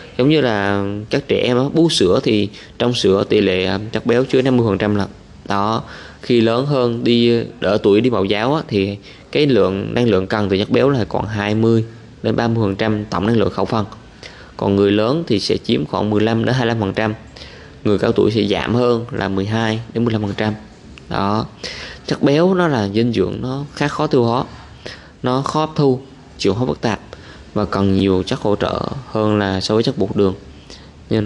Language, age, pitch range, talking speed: Vietnamese, 20-39, 100-125 Hz, 195 wpm